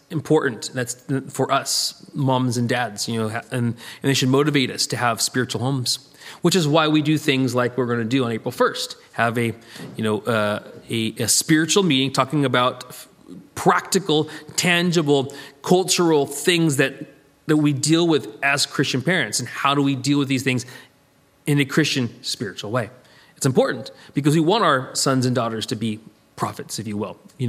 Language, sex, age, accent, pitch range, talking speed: English, male, 30-49, Canadian, 125-165 Hz, 190 wpm